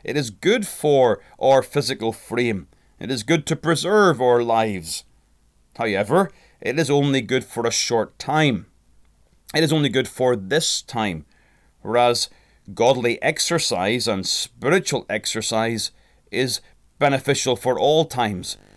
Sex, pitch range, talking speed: male, 110-140 Hz, 130 wpm